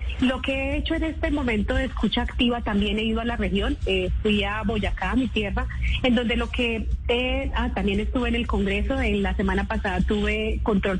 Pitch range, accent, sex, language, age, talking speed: 200-245 Hz, Colombian, female, Spanish, 30-49, 220 wpm